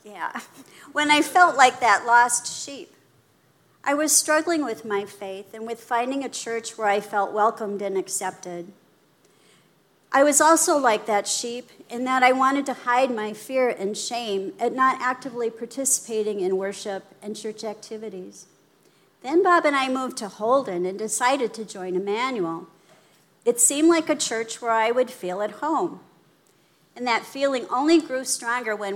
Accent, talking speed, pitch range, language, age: American, 165 wpm, 205-255 Hz, English, 50-69